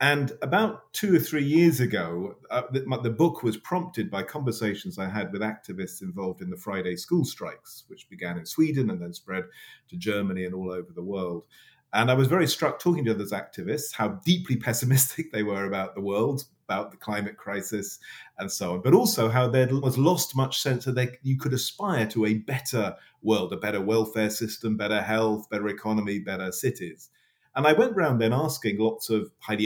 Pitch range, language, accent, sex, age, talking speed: 105-140 Hz, English, British, male, 40-59, 200 wpm